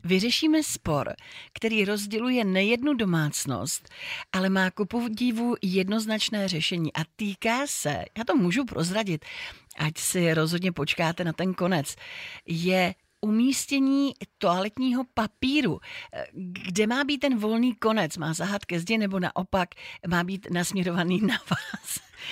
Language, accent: Czech, native